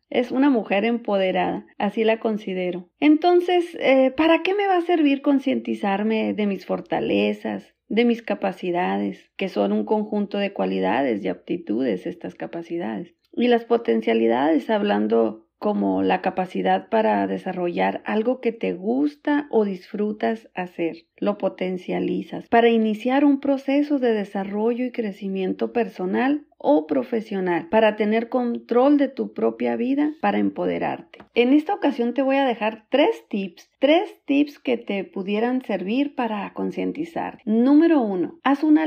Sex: female